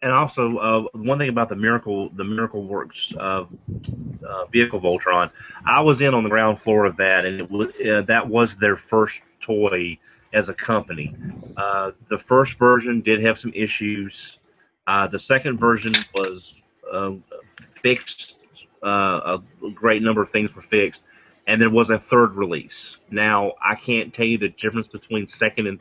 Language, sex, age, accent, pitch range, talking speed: English, male, 30-49, American, 100-115 Hz, 170 wpm